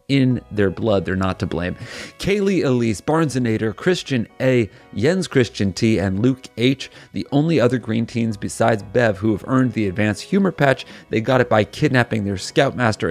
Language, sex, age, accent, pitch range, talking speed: English, male, 30-49, American, 105-135 Hz, 180 wpm